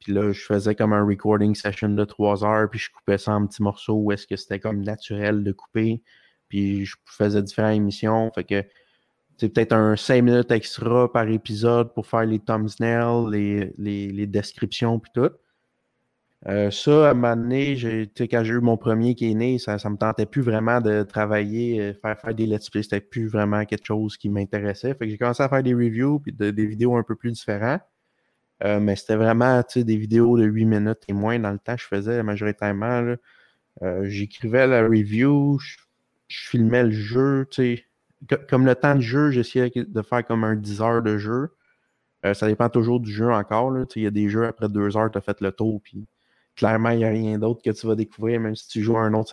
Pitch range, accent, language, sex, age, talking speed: 105-120 Hz, Canadian, French, male, 20-39, 220 wpm